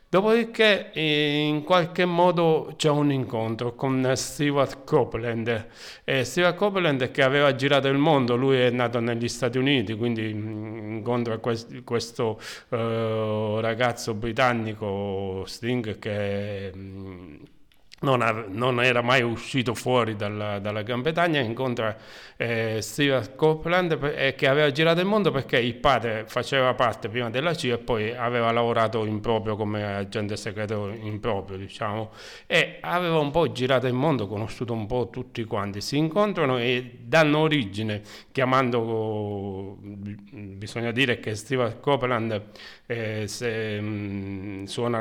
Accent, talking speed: native, 130 wpm